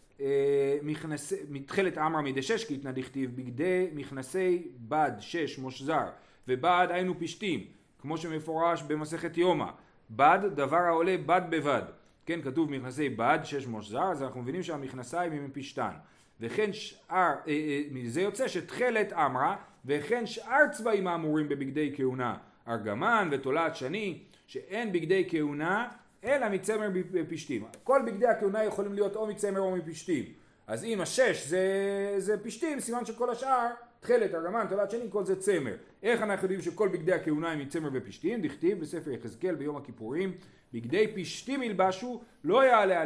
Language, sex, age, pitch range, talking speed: Hebrew, male, 40-59, 145-210 Hz, 145 wpm